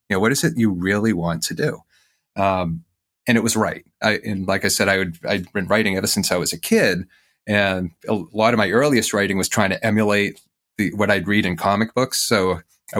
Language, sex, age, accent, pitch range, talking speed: English, male, 30-49, American, 95-110 Hz, 235 wpm